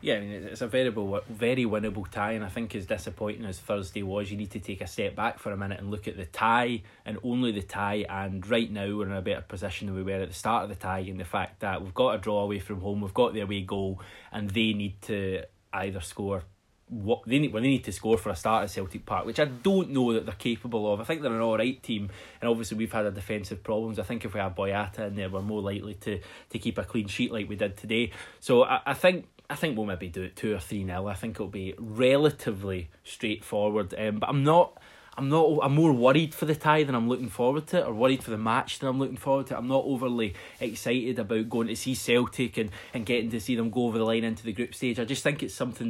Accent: British